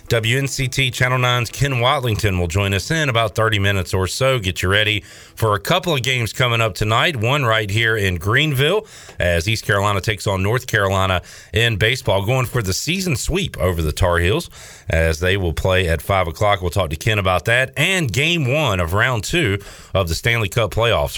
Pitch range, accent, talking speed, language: 95-120 Hz, American, 205 wpm, English